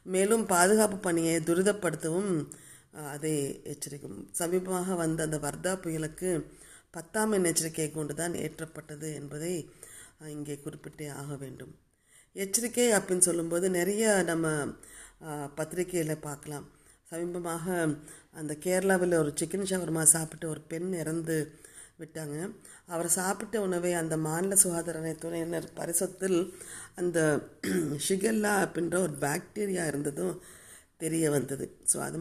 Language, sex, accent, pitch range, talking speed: Tamil, female, native, 155-185 Hz, 105 wpm